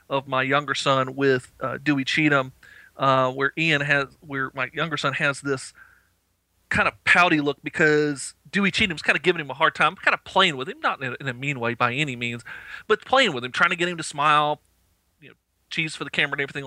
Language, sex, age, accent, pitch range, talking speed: English, male, 40-59, American, 120-155 Hz, 230 wpm